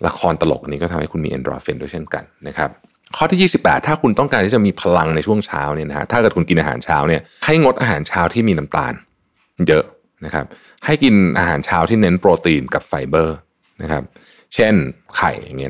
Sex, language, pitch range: male, Thai, 80-110 Hz